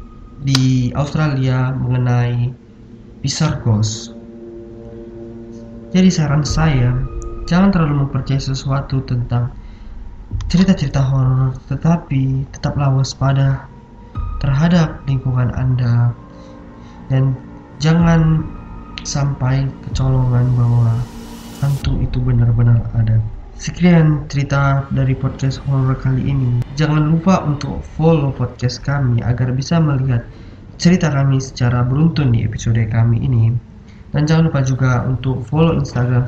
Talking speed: 100 wpm